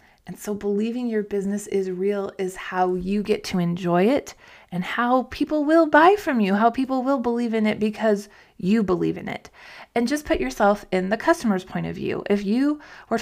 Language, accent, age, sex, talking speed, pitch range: English, American, 20-39, female, 205 wpm, 180-220 Hz